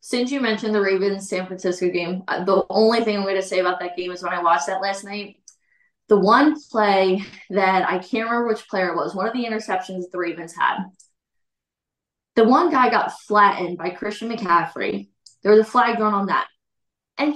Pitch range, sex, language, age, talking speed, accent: 190-240 Hz, female, English, 20-39, 205 wpm, American